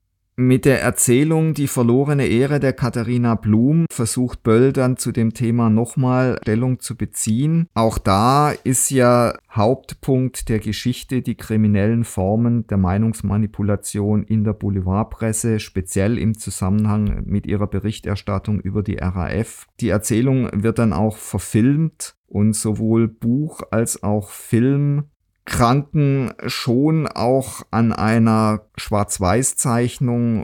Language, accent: German, German